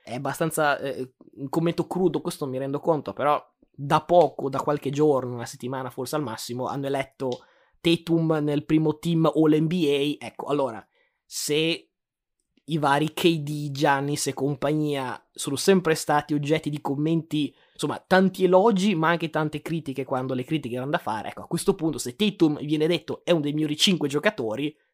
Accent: native